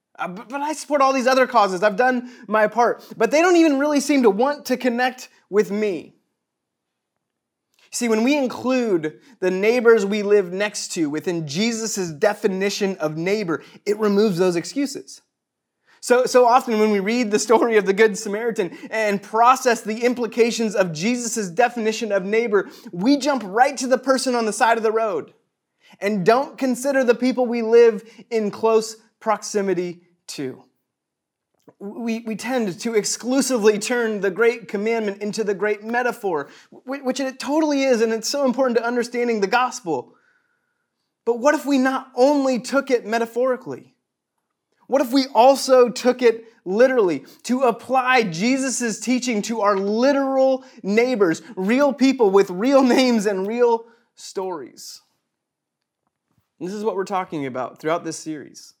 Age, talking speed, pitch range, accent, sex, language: 30-49, 155 wpm, 210-255 Hz, American, male, English